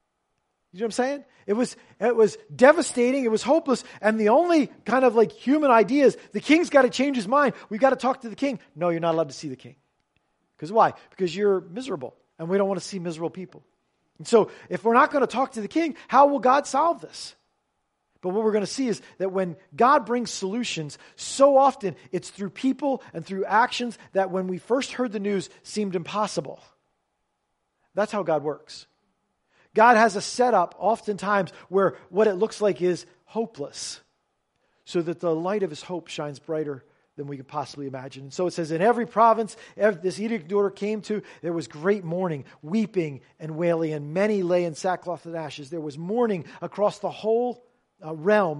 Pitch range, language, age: 170-235 Hz, English, 40-59